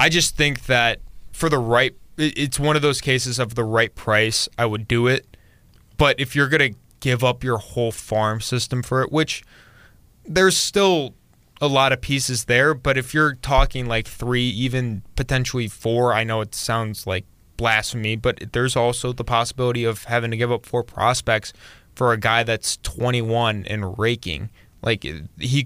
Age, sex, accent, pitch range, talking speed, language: 20-39, male, American, 110-130 Hz, 180 wpm, English